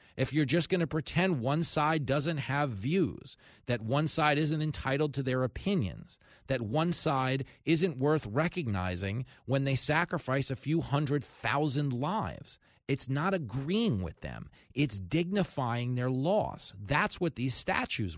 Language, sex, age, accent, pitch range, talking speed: English, male, 40-59, American, 120-185 Hz, 150 wpm